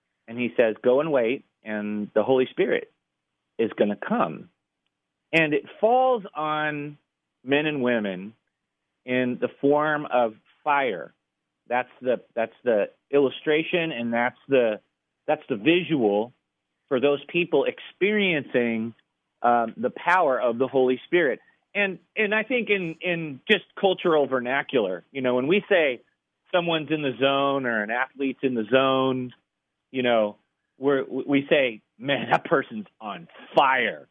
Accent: American